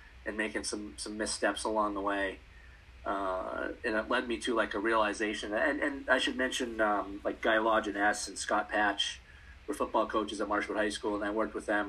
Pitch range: 90-110 Hz